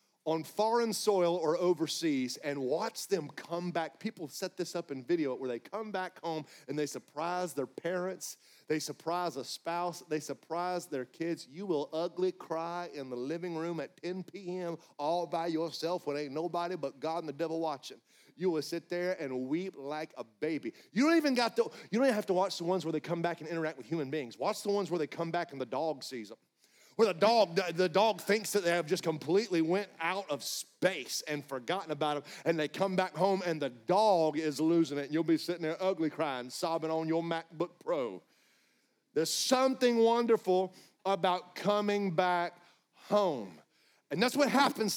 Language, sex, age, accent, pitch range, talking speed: English, male, 40-59, American, 155-195 Hz, 195 wpm